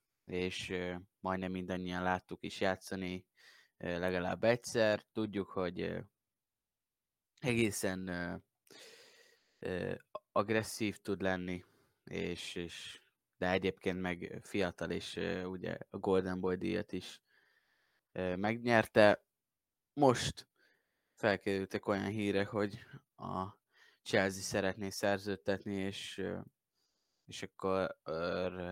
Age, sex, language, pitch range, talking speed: 20-39, male, Hungarian, 90-105 Hz, 85 wpm